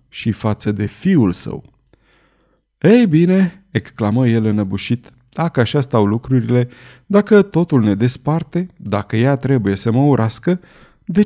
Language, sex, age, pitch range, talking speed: Romanian, male, 30-49, 115-155 Hz, 135 wpm